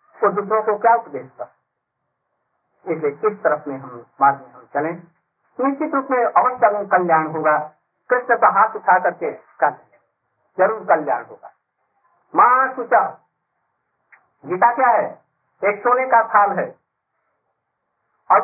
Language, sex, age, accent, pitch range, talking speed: Hindi, male, 50-69, native, 165-225 Hz, 125 wpm